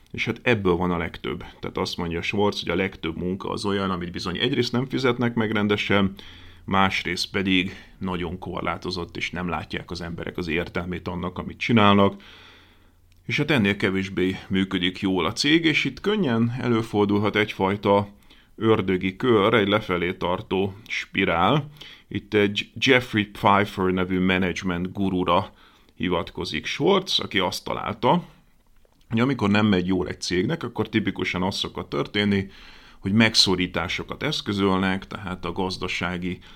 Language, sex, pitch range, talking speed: Hungarian, male, 90-105 Hz, 140 wpm